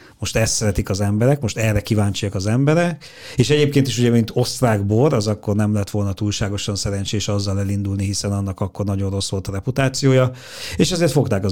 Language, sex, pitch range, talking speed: Hungarian, male, 105-130 Hz, 200 wpm